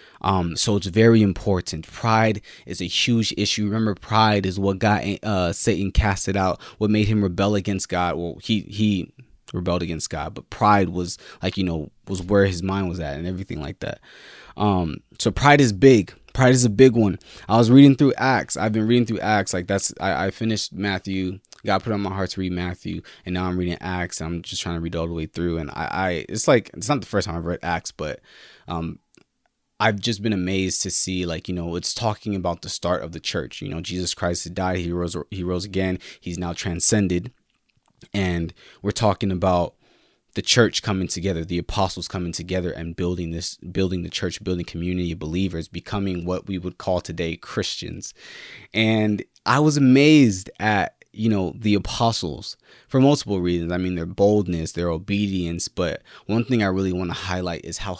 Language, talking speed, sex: English, 205 wpm, male